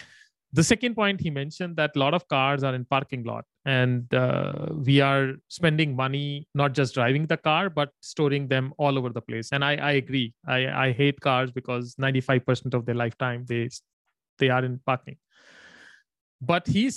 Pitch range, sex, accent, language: 130-155 Hz, male, Indian, English